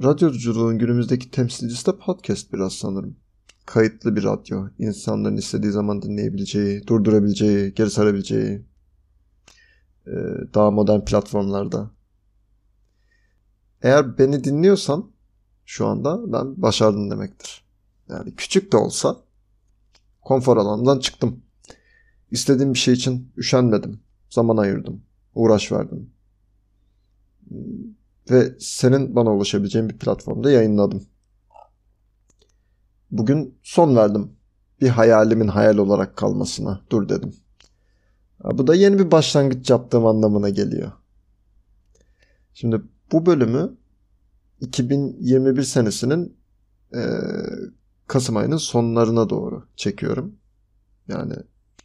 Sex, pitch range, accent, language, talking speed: male, 100-125 Hz, native, Turkish, 95 wpm